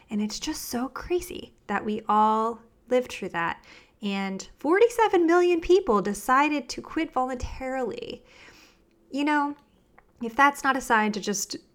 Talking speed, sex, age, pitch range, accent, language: 145 wpm, female, 20-39, 205-280 Hz, American, English